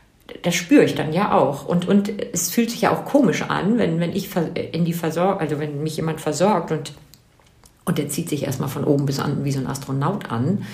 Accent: German